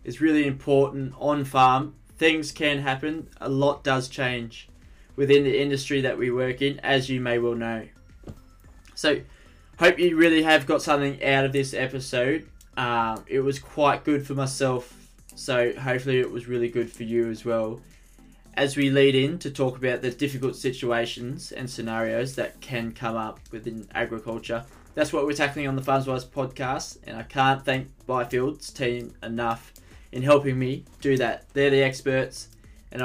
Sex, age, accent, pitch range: male, 20-39, Australian, 120-140 Hz